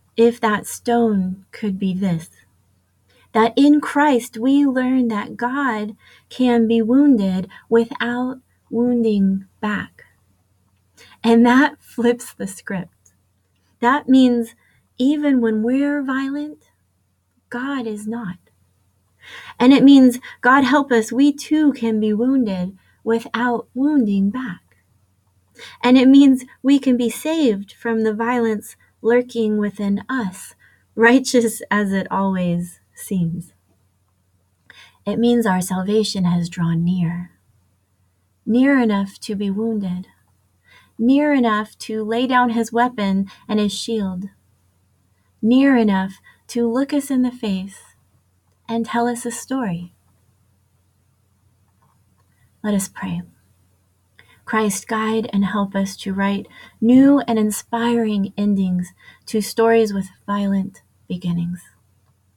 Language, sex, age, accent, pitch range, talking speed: English, female, 30-49, American, 165-240 Hz, 115 wpm